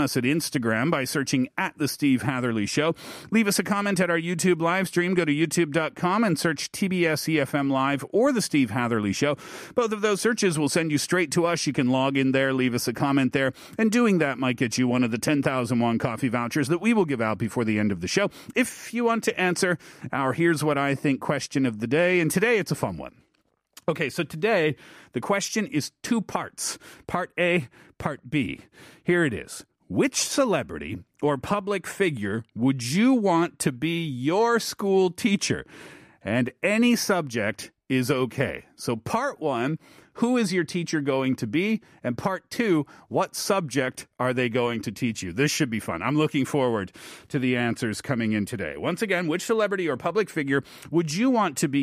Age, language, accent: 40-59, Korean, American